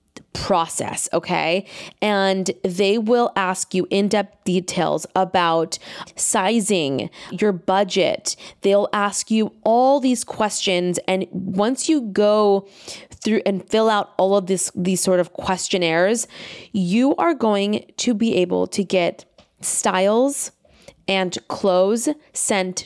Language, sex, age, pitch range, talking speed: English, female, 20-39, 185-220 Hz, 120 wpm